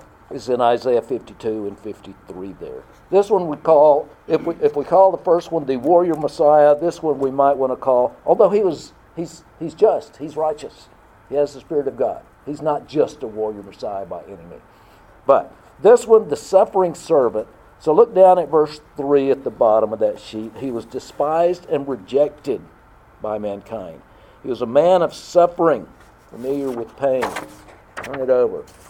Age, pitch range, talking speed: 60-79, 125-180 Hz, 185 wpm